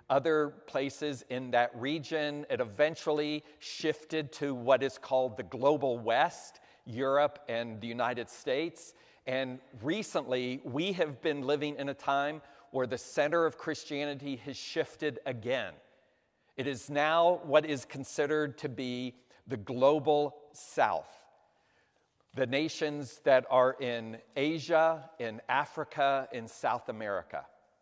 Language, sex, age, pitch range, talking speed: English, male, 50-69, 125-150 Hz, 125 wpm